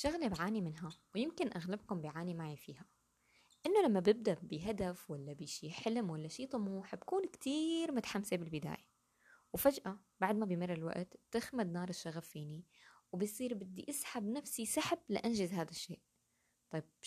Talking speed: 140 wpm